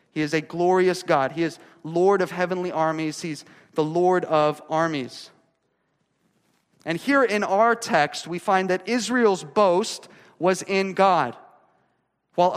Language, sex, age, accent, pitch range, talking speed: English, male, 30-49, American, 155-195 Hz, 145 wpm